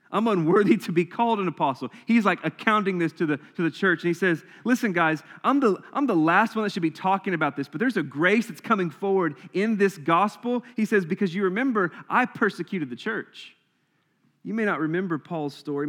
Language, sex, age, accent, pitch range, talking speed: English, male, 30-49, American, 140-185 Hz, 220 wpm